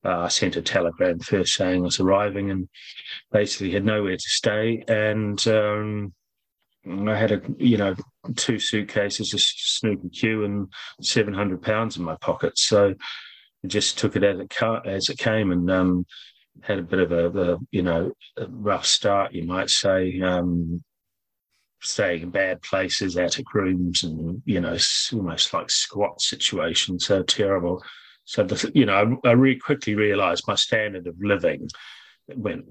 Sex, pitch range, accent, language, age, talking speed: male, 95-110 Hz, British, English, 30-49, 165 wpm